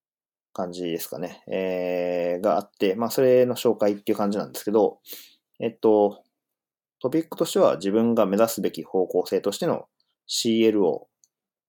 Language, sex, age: Japanese, male, 20-39